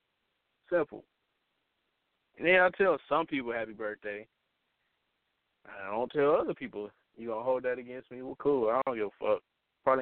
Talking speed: 170 wpm